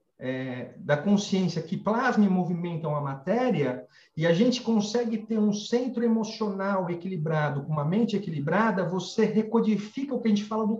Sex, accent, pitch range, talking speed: male, Brazilian, 170-230 Hz, 160 wpm